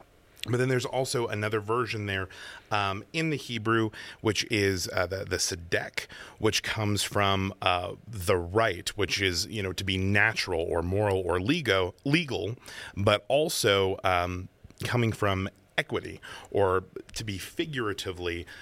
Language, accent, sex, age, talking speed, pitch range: English, American, male, 30-49, 145 wpm, 90-110 Hz